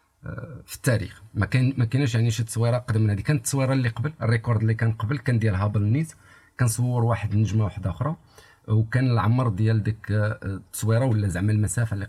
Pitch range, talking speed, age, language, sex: 100-120 Hz, 180 wpm, 50-69, Arabic, male